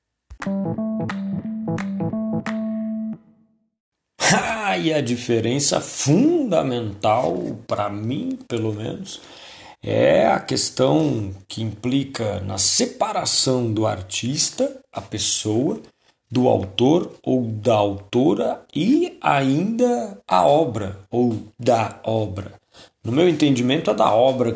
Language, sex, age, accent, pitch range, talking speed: Portuguese, male, 40-59, Brazilian, 105-145 Hz, 95 wpm